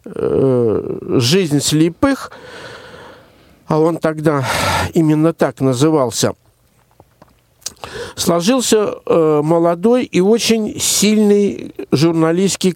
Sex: male